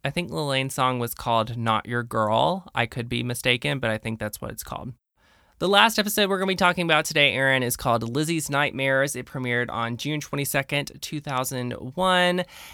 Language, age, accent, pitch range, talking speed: English, 20-39, American, 115-150 Hz, 195 wpm